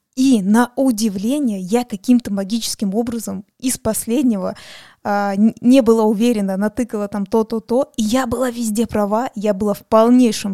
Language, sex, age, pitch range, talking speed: Russian, female, 20-39, 205-255 Hz, 135 wpm